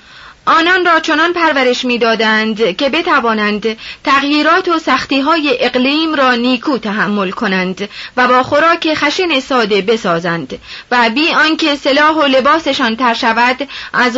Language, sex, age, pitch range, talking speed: Persian, female, 30-49, 230-295 Hz, 125 wpm